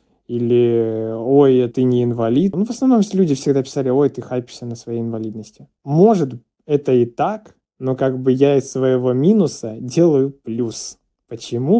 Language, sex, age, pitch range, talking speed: Russian, male, 20-39, 115-135 Hz, 170 wpm